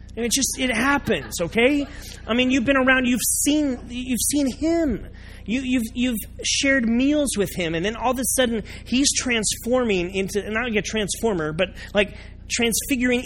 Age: 30-49